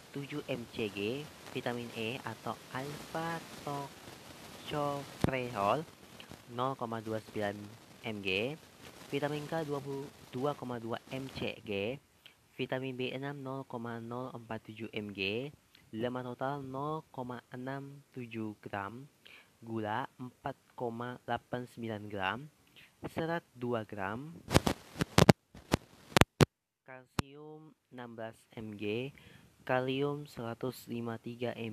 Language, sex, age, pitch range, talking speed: Indonesian, female, 30-49, 110-135 Hz, 55 wpm